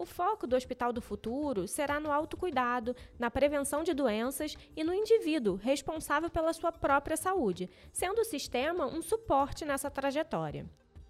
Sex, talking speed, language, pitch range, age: female, 150 wpm, Portuguese, 220-290 Hz, 20-39